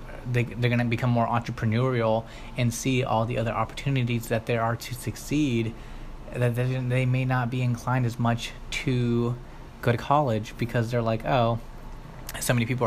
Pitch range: 115-125 Hz